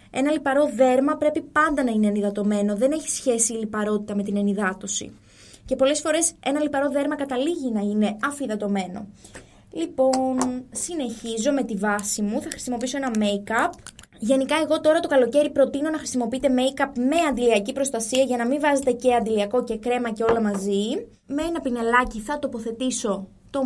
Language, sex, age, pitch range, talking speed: Greek, female, 20-39, 225-285 Hz, 165 wpm